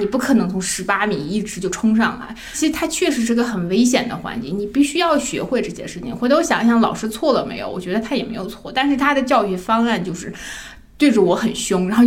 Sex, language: female, Chinese